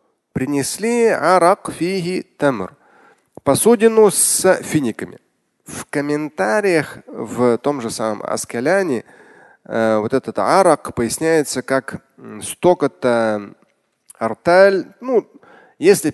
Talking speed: 95 wpm